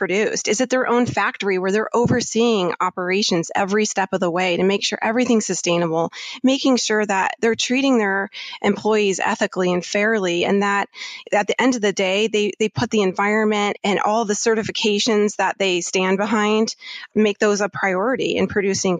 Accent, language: American, English